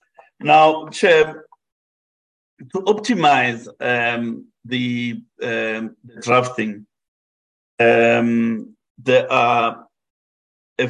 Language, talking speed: English, 60 wpm